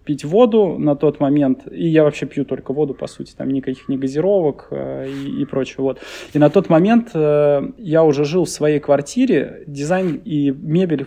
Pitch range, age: 135-160 Hz, 20-39